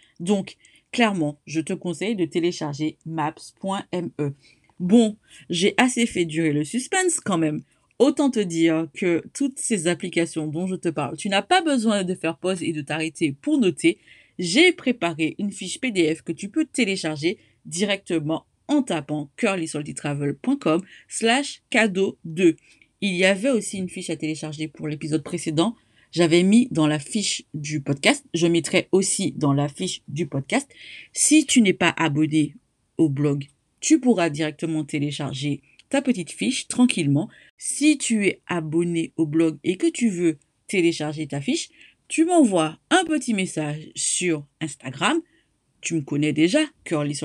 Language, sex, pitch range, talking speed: French, female, 155-235 Hz, 155 wpm